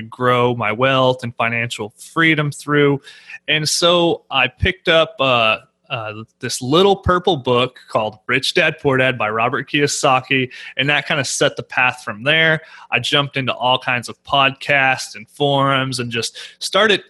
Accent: American